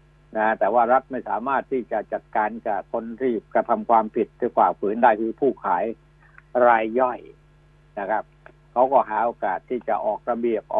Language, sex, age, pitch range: Thai, male, 60-79, 115-150 Hz